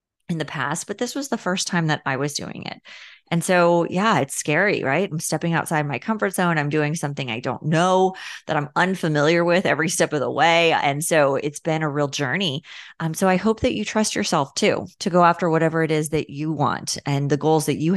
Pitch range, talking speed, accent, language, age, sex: 150-190 Hz, 235 wpm, American, English, 30-49, female